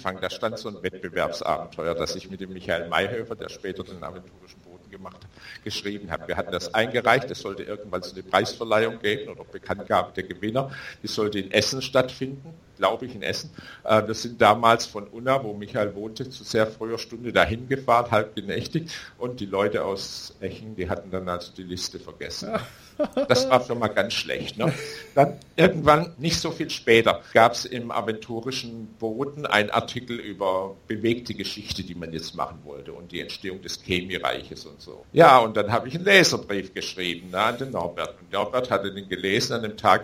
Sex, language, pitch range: male, German, 100-130 Hz